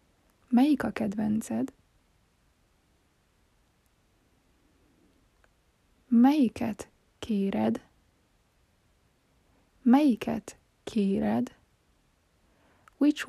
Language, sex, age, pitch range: Hungarian, female, 20-39, 215-275 Hz